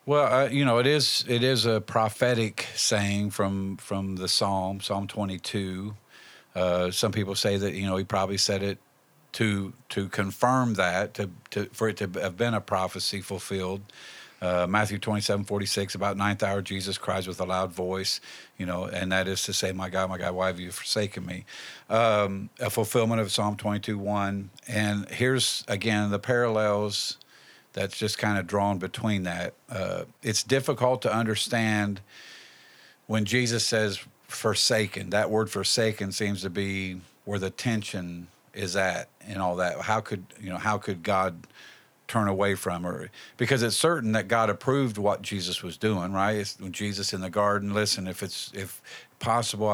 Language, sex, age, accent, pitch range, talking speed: English, male, 50-69, American, 95-110 Hz, 180 wpm